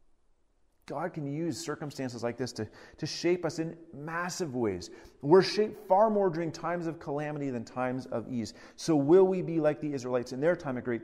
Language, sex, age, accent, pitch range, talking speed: English, male, 30-49, American, 115-155 Hz, 200 wpm